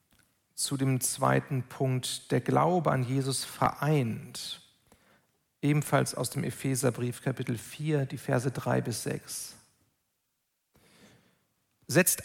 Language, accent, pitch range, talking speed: German, German, 135-165 Hz, 105 wpm